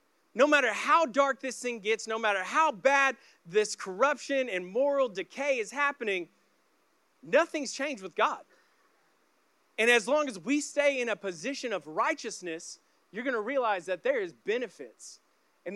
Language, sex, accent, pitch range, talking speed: English, male, American, 195-260 Hz, 160 wpm